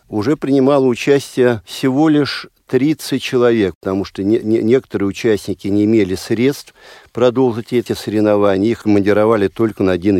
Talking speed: 130 wpm